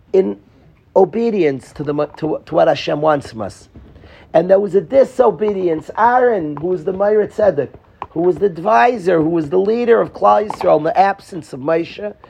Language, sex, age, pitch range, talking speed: English, male, 40-59, 160-215 Hz, 175 wpm